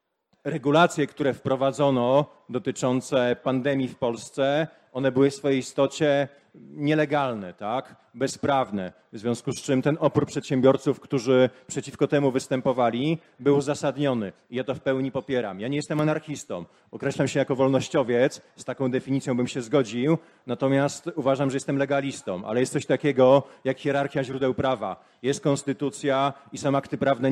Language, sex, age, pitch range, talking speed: Polish, male, 40-59, 130-145 Hz, 145 wpm